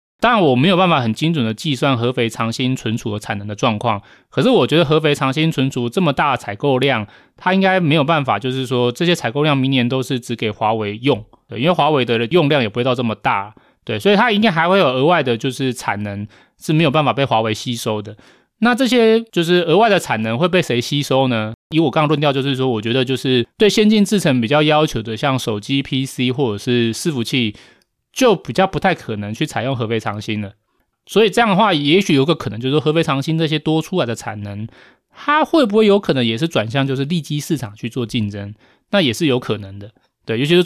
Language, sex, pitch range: Chinese, male, 115-160 Hz